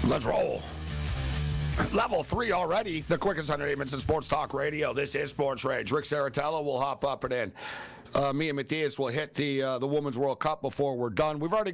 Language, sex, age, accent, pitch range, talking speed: English, male, 50-69, American, 130-155 Hz, 205 wpm